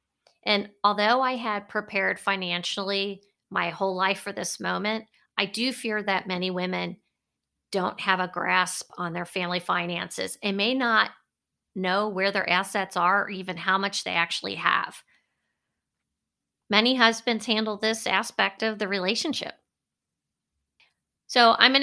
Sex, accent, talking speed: female, American, 145 wpm